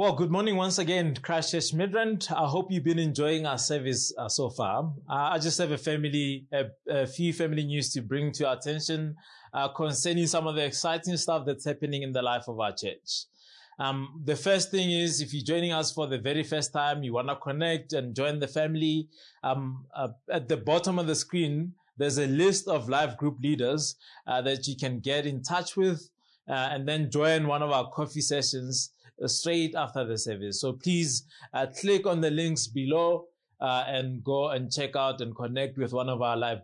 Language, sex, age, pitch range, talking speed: English, male, 20-39, 135-165 Hz, 210 wpm